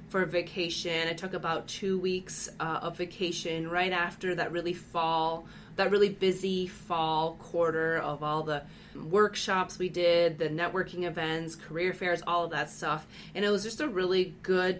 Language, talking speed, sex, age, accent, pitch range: English, 170 wpm, female, 20-39, American, 155-185 Hz